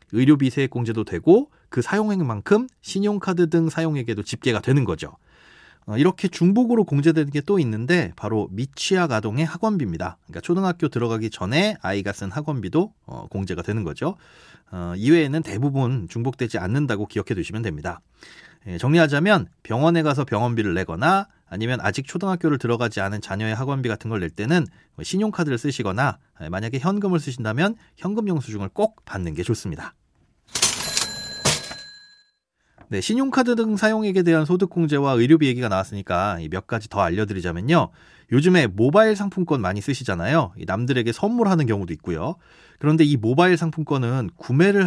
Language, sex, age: Korean, male, 30-49